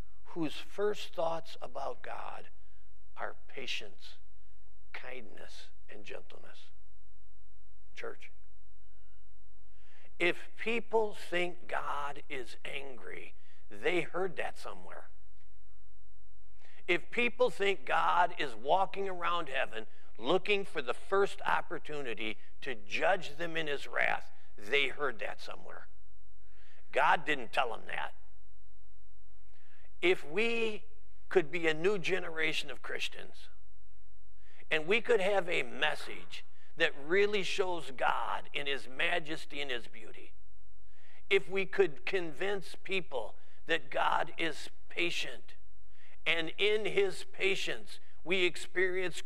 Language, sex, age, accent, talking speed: English, male, 50-69, American, 110 wpm